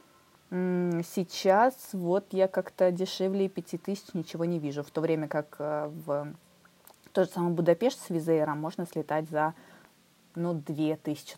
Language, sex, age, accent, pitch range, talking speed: Russian, female, 20-39, native, 150-190 Hz, 130 wpm